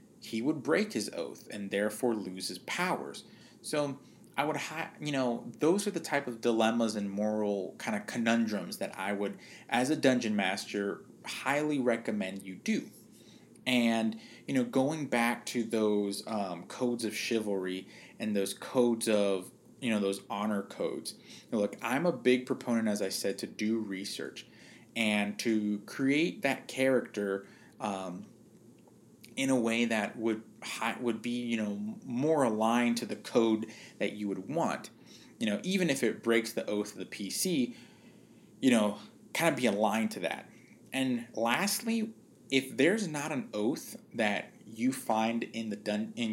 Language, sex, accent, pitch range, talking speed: English, male, American, 105-135 Hz, 160 wpm